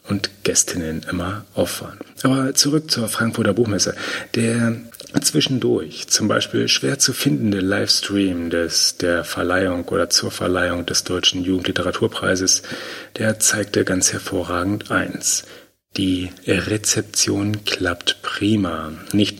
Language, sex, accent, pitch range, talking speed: German, male, German, 95-105 Hz, 110 wpm